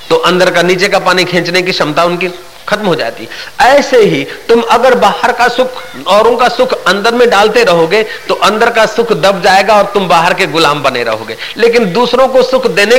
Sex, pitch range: male, 180-250 Hz